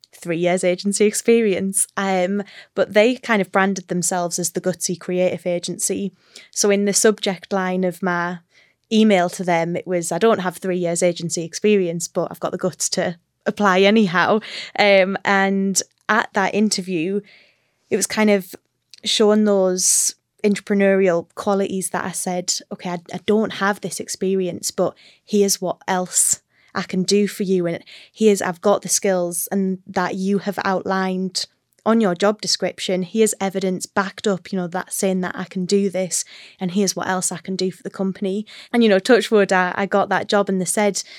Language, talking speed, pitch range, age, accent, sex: English, 180 wpm, 180-200 Hz, 10-29, British, female